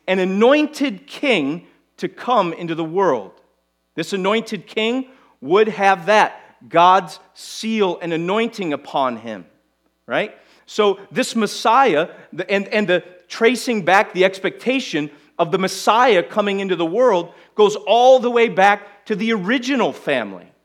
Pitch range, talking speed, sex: 165-225 Hz, 135 wpm, male